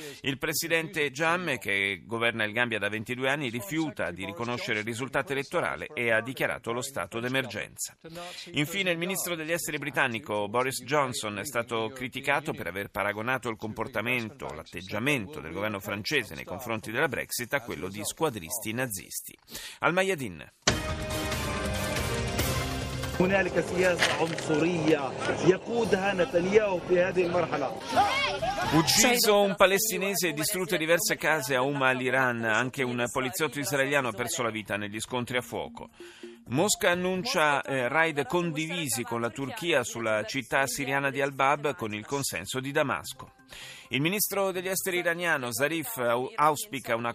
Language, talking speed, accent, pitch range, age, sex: Italian, 125 wpm, native, 115-155 Hz, 40-59, male